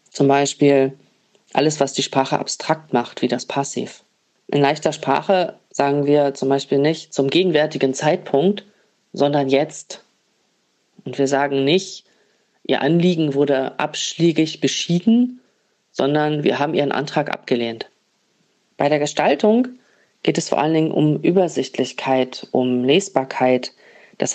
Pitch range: 135-180 Hz